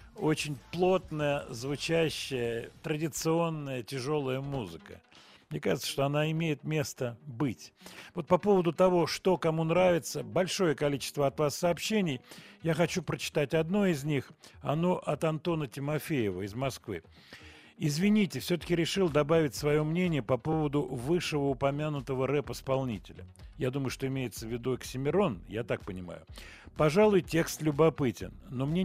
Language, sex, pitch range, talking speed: Russian, male, 125-165 Hz, 130 wpm